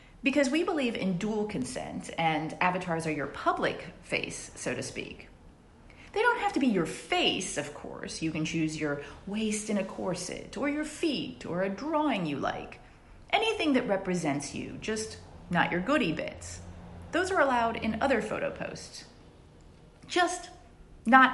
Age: 30-49